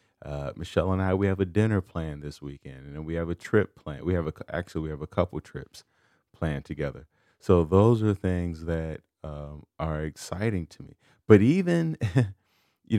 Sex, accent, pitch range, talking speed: male, American, 80-110 Hz, 190 wpm